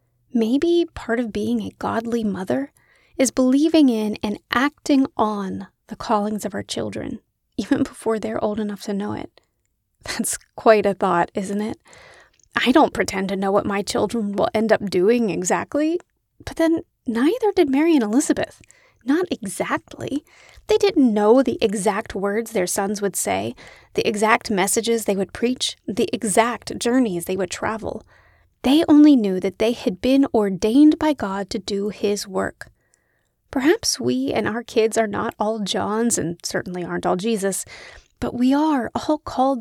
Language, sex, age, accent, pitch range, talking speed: English, female, 30-49, American, 210-275 Hz, 165 wpm